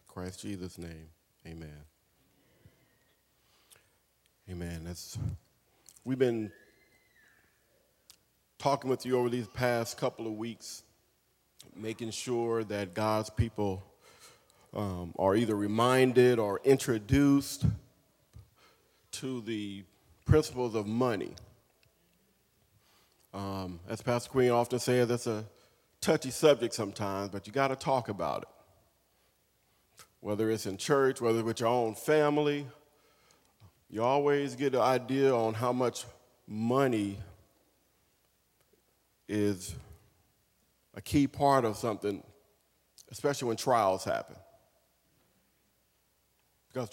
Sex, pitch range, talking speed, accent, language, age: male, 100-130 Hz, 100 wpm, American, English, 40-59